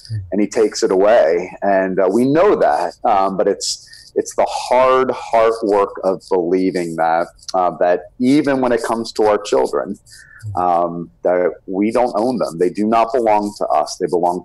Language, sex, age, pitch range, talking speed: English, male, 40-59, 90-120 Hz, 185 wpm